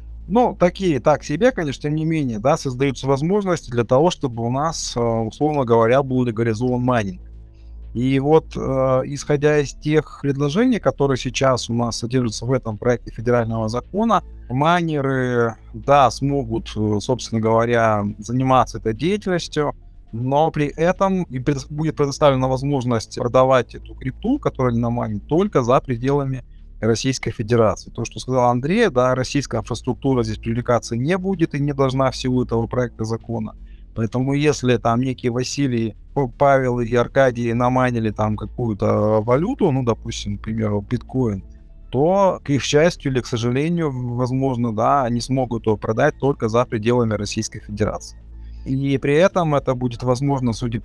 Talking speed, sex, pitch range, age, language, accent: 145 wpm, male, 115-140 Hz, 20-39, Russian, native